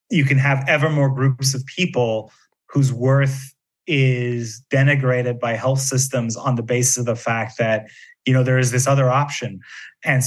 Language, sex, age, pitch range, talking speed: English, male, 30-49, 125-140 Hz, 175 wpm